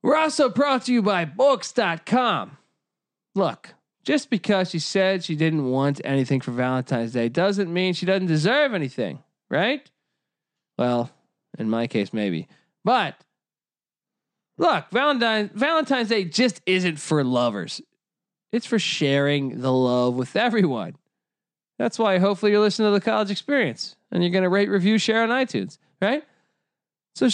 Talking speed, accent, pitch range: 145 wpm, American, 155-235 Hz